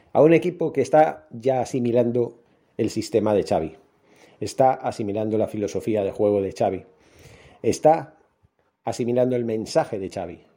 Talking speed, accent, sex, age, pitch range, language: 140 wpm, Spanish, male, 40-59, 115-140 Hz, Spanish